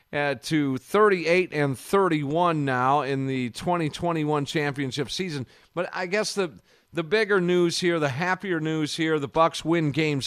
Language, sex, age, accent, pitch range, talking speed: English, male, 50-69, American, 125-160 Hz, 160 wpm